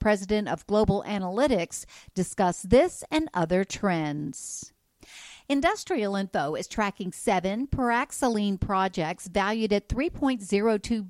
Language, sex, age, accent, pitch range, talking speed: English, female, 50-69, American, 180-235 Hz, 105 wpm